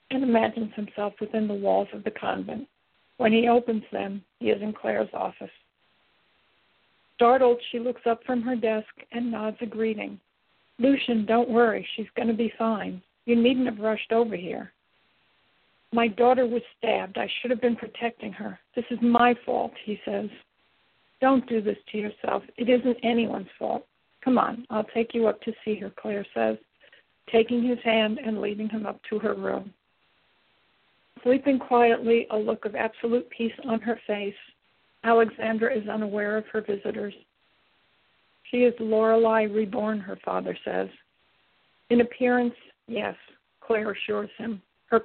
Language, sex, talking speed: English, female, 160 wpm